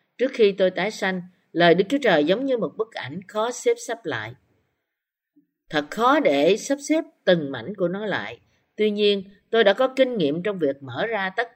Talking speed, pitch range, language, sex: 210 wpm, 155-230 Hz, Vietnamese, female